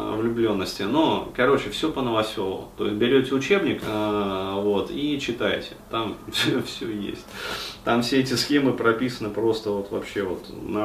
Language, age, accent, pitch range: Russian, 30-49, native, 105-135 Hz